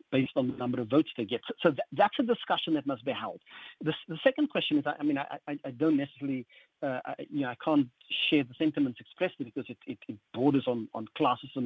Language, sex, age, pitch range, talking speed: English, male, 50-69, 135-190 Hz, 245 wpm